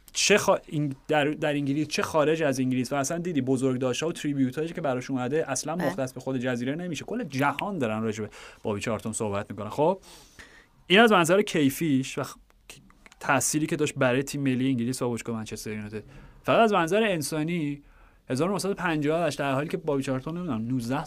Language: Persian